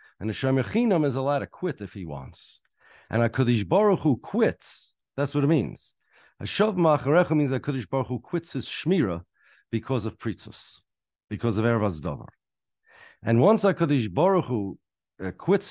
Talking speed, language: 150 wpm, English